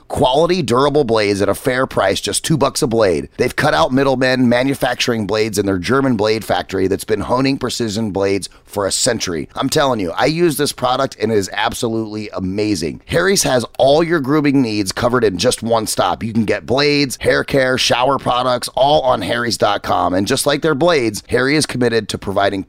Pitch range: 105-140 Hz